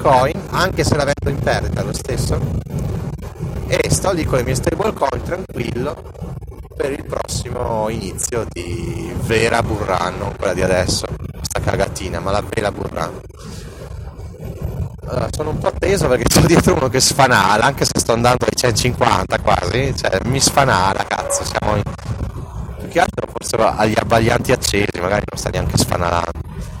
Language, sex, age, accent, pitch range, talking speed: Italian, male, 30-49, native, 90-125 Hz, 155 wpm